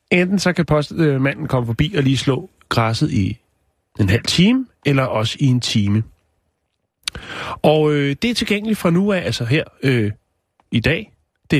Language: Danish